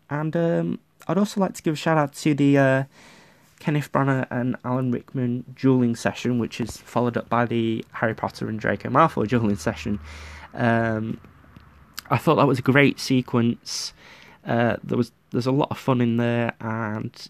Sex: male